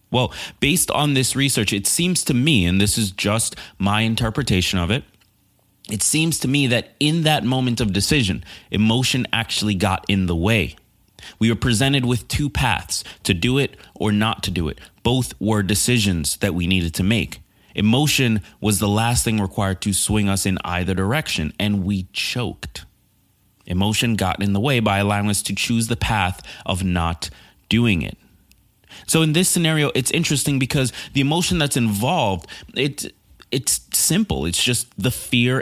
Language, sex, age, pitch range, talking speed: English, male, 30-49, 100-125 Hz, 175 wpm